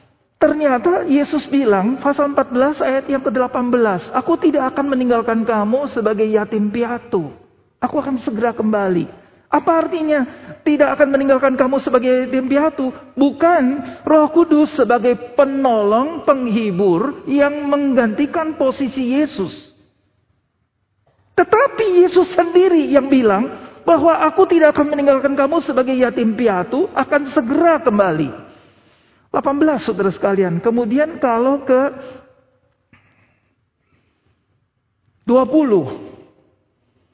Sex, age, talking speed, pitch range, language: male, 40-59, 100 wpm, 205-290 Hz, Indonesian